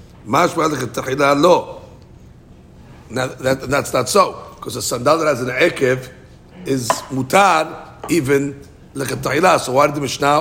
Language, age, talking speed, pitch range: English, 60-79, 120 wpm, 130-170 Hz